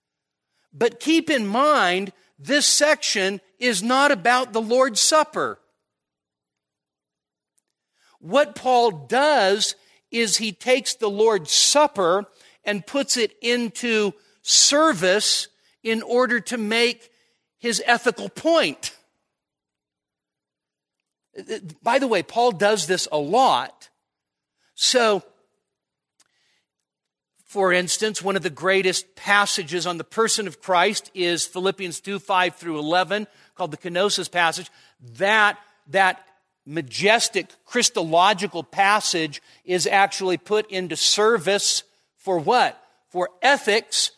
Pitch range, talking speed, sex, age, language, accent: 165-225 Hz, 105 wpm, male, 50-69, English, American